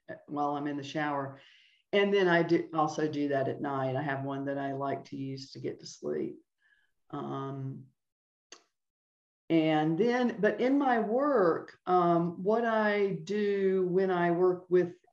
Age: 50-69